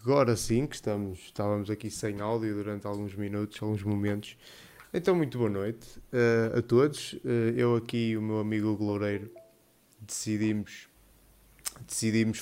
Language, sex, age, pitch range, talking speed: Portuguese, male, 20-39, 105-120 Hz, 130 wpm